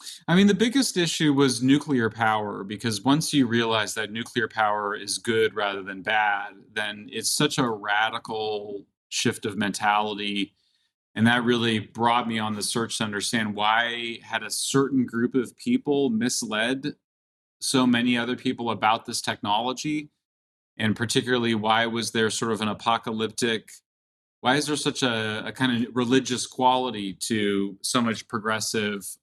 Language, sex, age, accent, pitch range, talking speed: English, male, 30-49, American, 105-130 Hz, 155 wpm